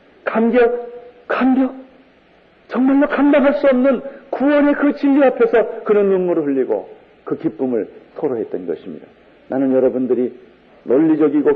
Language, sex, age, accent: Korean, male, 50-69, native